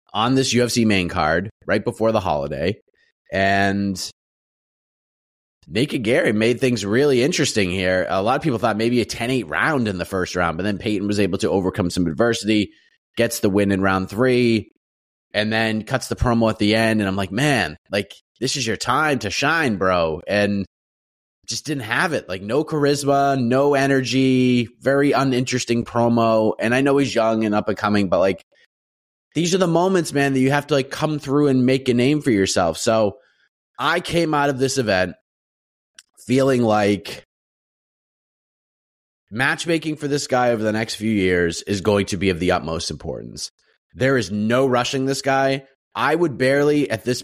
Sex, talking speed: male, 185 wpm